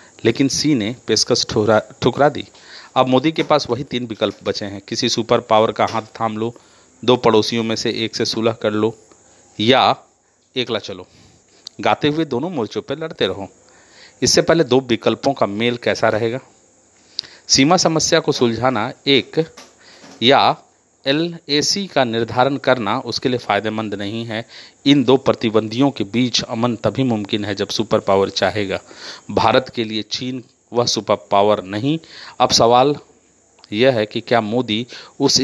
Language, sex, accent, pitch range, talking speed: Hindi, male, native, 110-135 Hz, 160 wpm